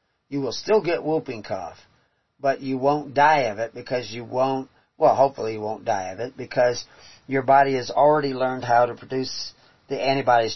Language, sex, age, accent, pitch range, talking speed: English, male, 40-59, American, 110-135 Hz, 190 wpm